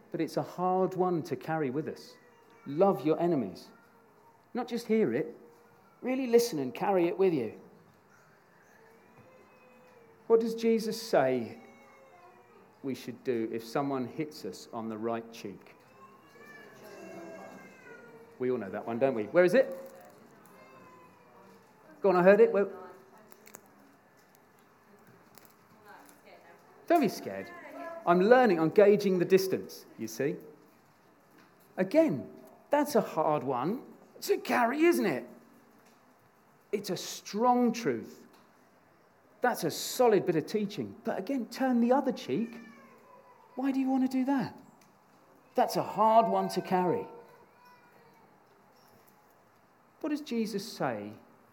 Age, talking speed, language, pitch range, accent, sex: 40-59, 125 wpm, English, 160-250 Hz, British, male